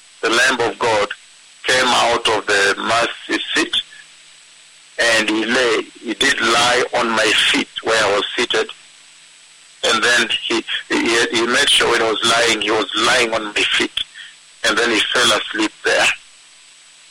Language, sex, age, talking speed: English, male, 50-69, 160 wpm